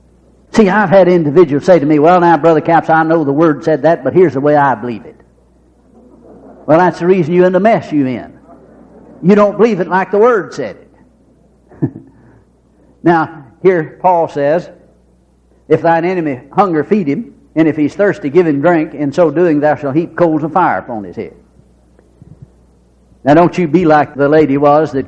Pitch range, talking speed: 145-220 Hz, 195 wpm